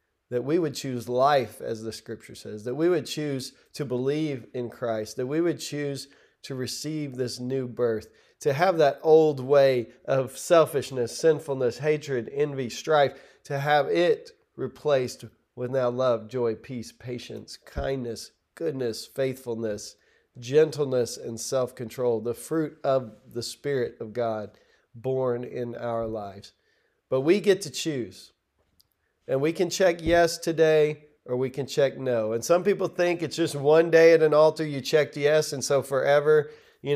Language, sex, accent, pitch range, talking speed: English, male, American, 125-155 Hz, 160 wpm